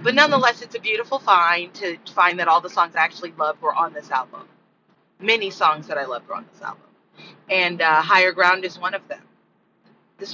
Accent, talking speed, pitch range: American, 215 wpm, 170-220 Hz